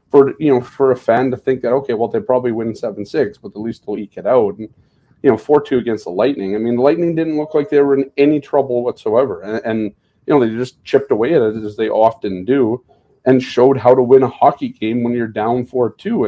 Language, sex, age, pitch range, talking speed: English, male, 30-49, 115-150 Hz, 250 wpm